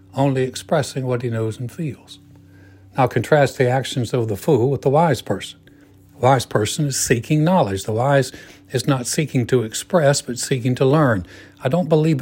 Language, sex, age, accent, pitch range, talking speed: English, male, 60-79, American, 125-150 Hz, 185 wpm